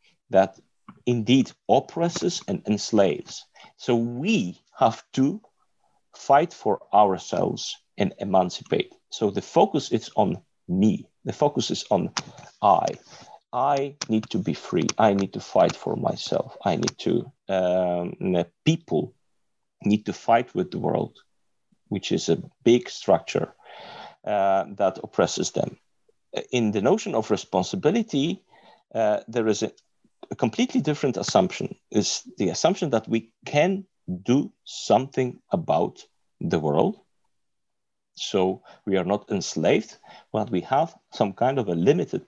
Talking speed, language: 135 wpm, English